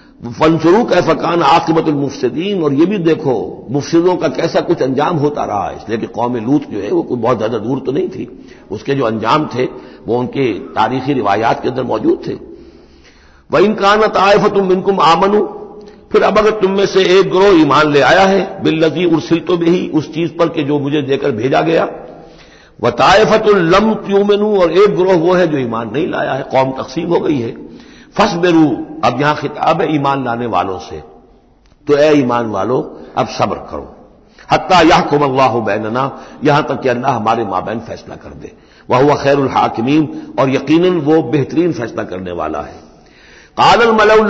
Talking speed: 195 wpm